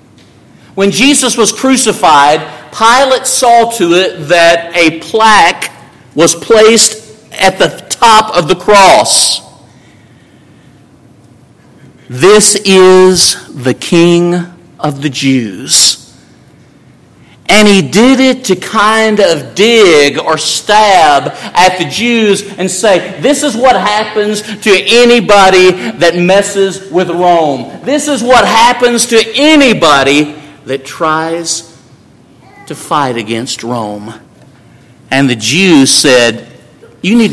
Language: English